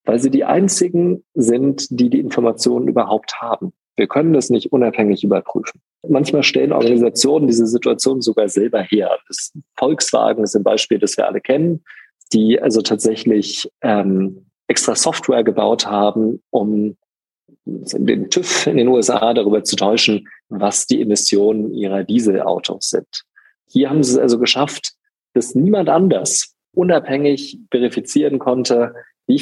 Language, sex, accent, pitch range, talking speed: German, male, German, 105-135 Hz, 140 wpm